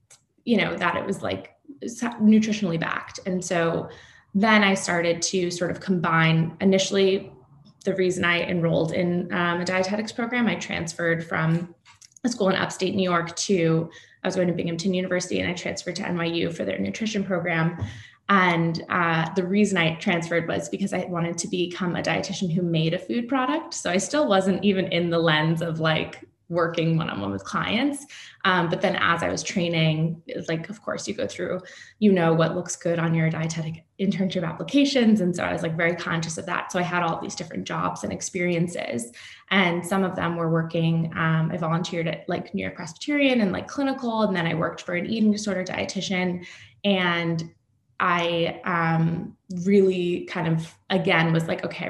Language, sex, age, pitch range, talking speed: English, female, 20-39, 165-195 Hz, 185 wpm